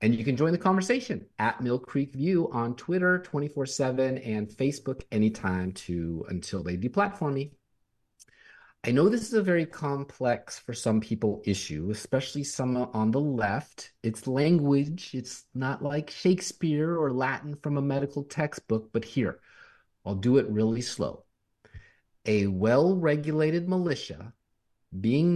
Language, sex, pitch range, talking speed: English, male, 110-155 Hz, 140 wpm